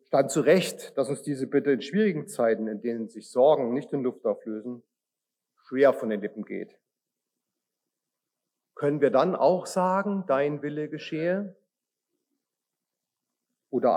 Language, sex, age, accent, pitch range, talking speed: German, male, 40-59, German, 130-205 Hz, 140 wpm